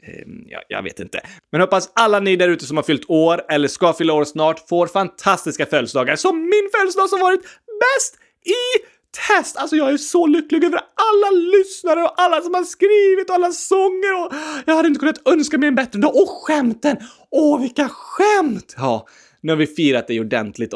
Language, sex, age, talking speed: Swedish, male, 30-49, 195 wpm